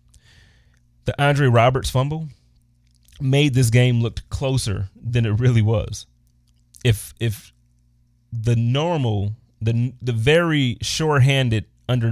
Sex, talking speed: male, 110 wpm